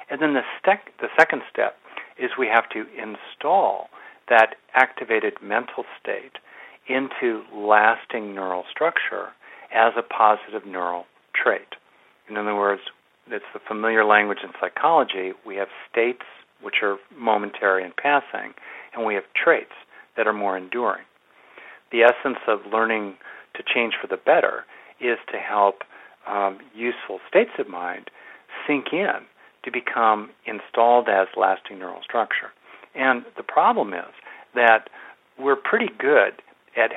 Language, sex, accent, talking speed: English, male, American, 135 wpm